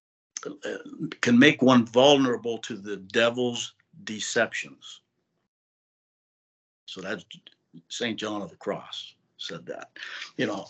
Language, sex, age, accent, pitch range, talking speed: English, male, 60-79, American, 110-130 Hz, 105 wpm